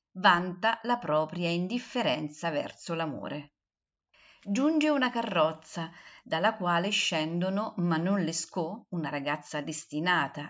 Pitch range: 155-205 Hz